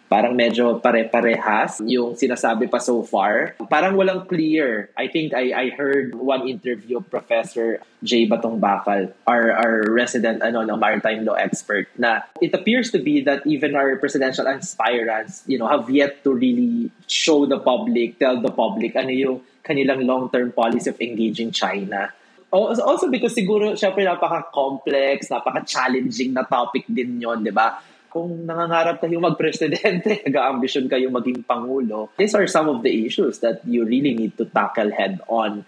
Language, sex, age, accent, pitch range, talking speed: English, male, 20-39, Filipino, 115-145 Hz, 160 wpm